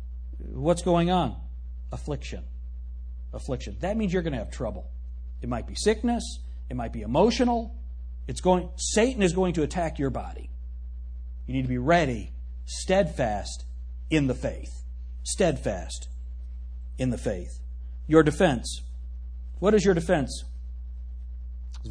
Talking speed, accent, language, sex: 135 wpm, American, English, male